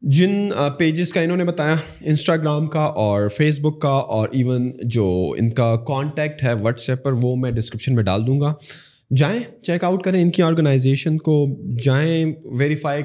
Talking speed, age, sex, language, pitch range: 180 wpm, 20-39, male, Urdu, 125-155 Hz